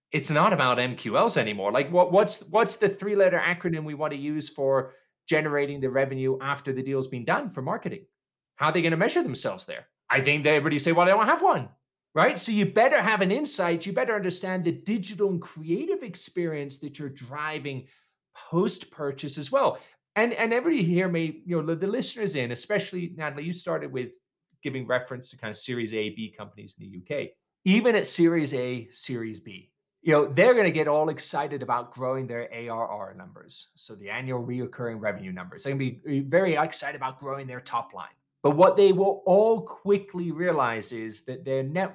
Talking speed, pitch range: 200 wpm, 125-180 Hz